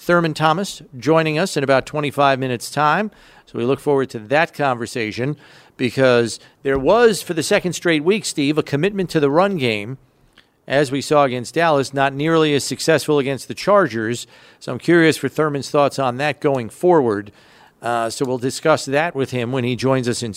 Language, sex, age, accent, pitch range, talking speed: English, male, 50-69, American, 125-165 Hz, 190 wpm